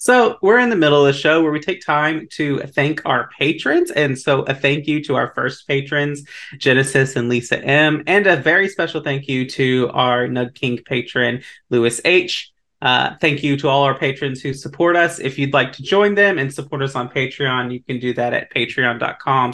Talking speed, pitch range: 210 wpm, 135-165 Hz